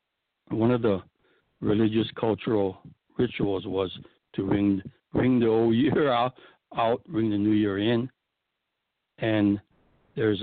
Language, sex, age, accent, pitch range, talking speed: English, male, 60-79, American, 100-115 Hz, 125 wpm